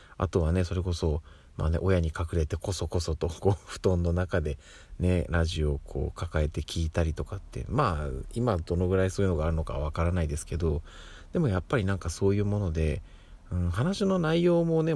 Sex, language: male, Japanese